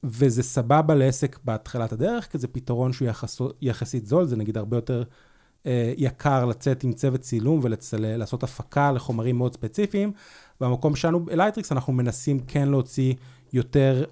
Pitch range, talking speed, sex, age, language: 125-145 Hz, 150 wpm, male, 30-49, Hebrew